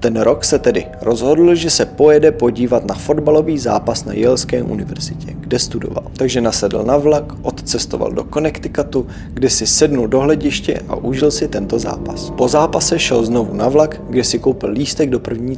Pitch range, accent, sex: 115-150 Hz, native, male